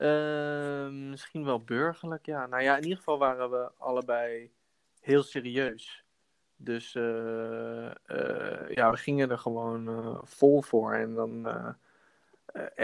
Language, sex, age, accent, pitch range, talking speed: Dutch, male, 20-39, Dutch, 115-135 Hz, 135 wpm